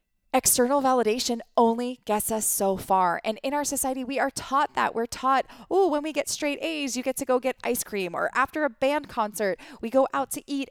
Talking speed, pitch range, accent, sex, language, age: 225 wpm, 205-270 Hz, American, female, English, 20-39